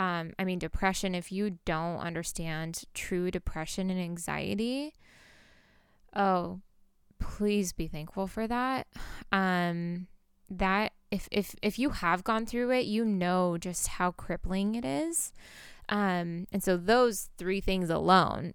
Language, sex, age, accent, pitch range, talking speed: English, female, 10-29, American, 180-220 Hz, 135 wpm